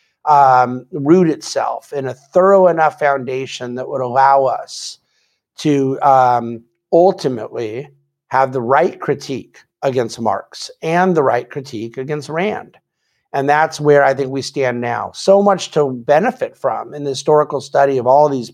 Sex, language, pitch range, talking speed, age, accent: male, English, 130-165 Hz, 150 wpm, 50-69, American